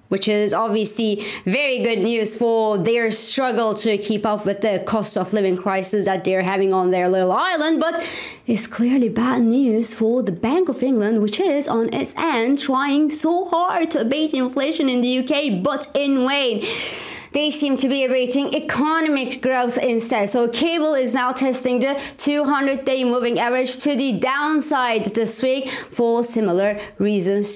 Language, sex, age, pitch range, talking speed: English, female, 20-39, 190-260 Hz, 170 wpm